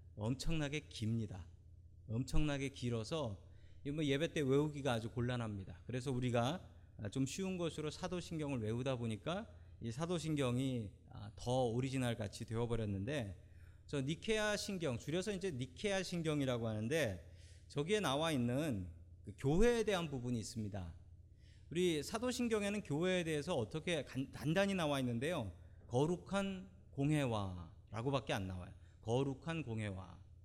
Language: Korean